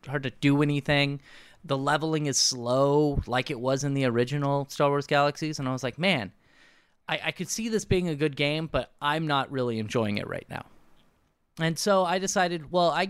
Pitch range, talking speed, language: 130-175 Hz, 205 wpm, English